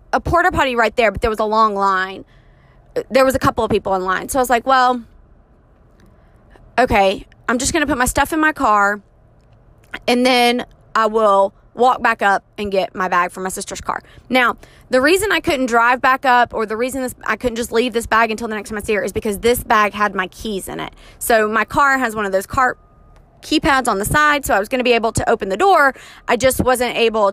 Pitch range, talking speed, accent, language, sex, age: 215-270 Hz, 240 wpm, American, English, female, 20-39